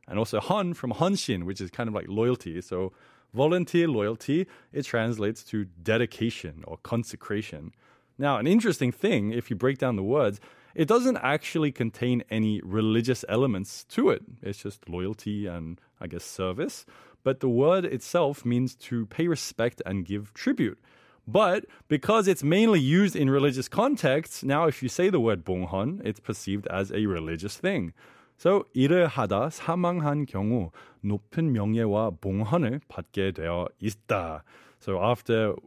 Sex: male